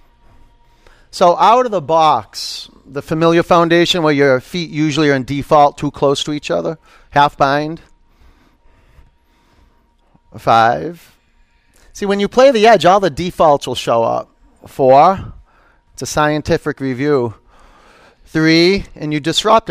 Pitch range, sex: 135-180 Hz, male